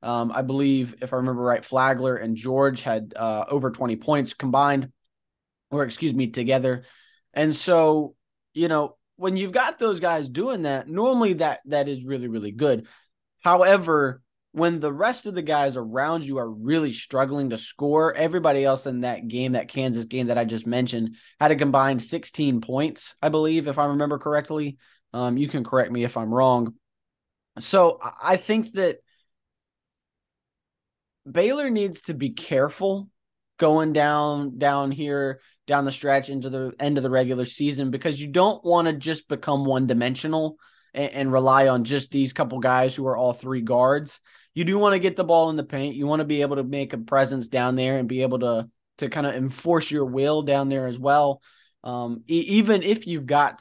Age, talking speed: 20-39, 190 wpm